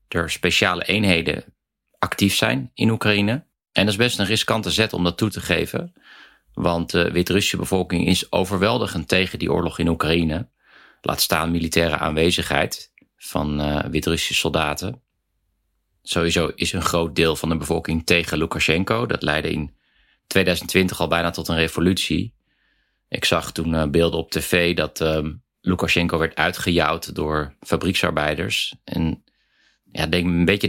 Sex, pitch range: male, 80-95 Hz